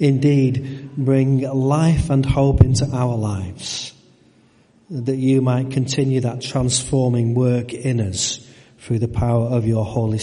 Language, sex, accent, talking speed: English, male, British, 135 wpm